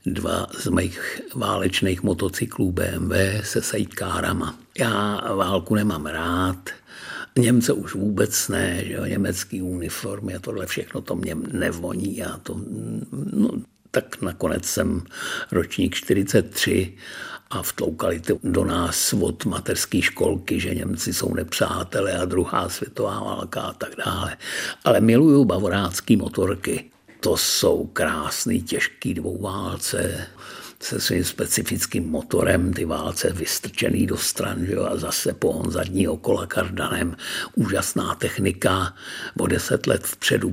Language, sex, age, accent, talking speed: Czech, male, 60-79, native, 125 wpm